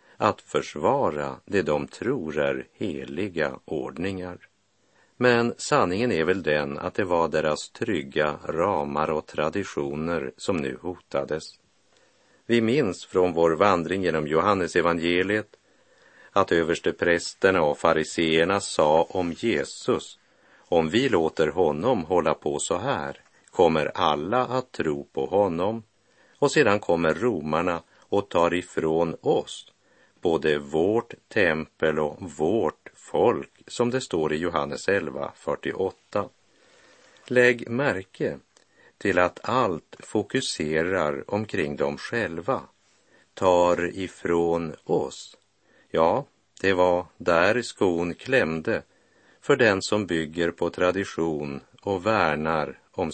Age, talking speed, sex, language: 50-69, 115 wpm, male, Swedish